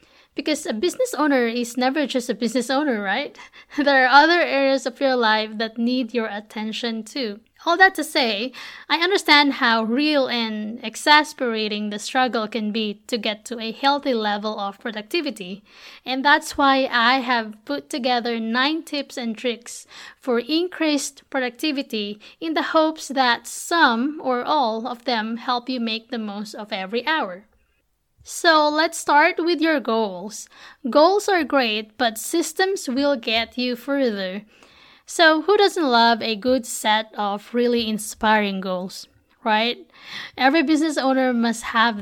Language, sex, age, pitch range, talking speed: English, female, 20-39, 225-290 Hz, 155 wpm